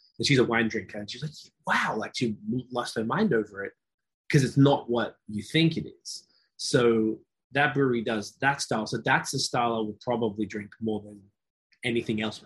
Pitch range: 110-140 Hz